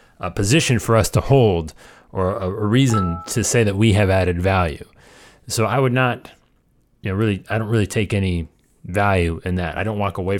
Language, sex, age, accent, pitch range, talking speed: English, male, 30-49, American, 90-115 Hz, 200 wpm